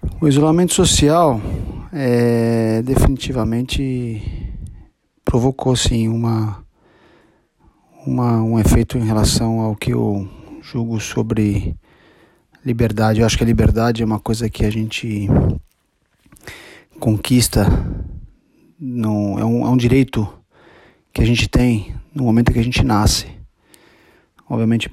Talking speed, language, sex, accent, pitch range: 105 wpm, Portuguese, male, Brazilian, 105-120 Hz